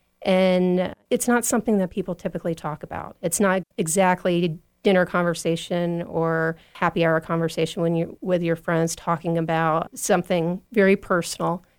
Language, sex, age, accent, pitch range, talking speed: English, female, 40-59, American, 165-185 Hz, 145 wpm